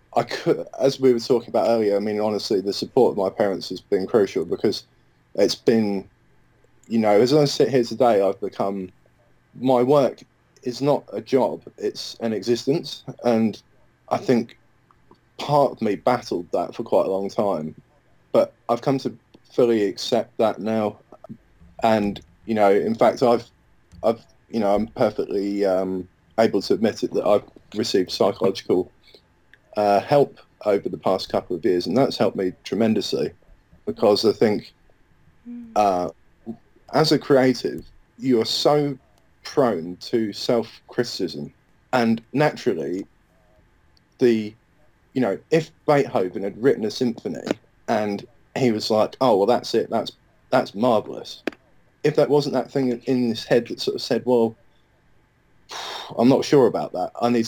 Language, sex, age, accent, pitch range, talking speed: English, male, 20-39, British, 105-130 Hz, 155 wpm